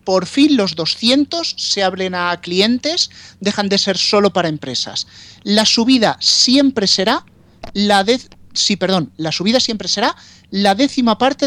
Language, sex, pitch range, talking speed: Spanish, male, 185-245 Hz, 150 wpm